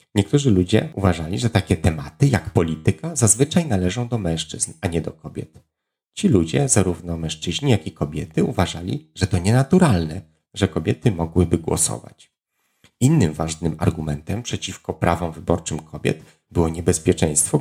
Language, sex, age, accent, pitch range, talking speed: Polish, male, 30-49, native, 85-125 Hz, 135 wpm